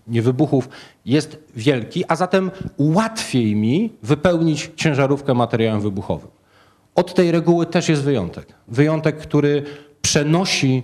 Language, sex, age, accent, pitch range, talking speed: Polish, male, 40-59, native, 115-150 Hz, 115 wpm